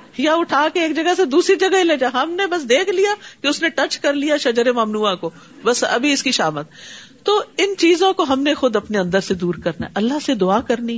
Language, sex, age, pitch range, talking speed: Urdu, female, 50-69, 205-295 Hz, 255 wpm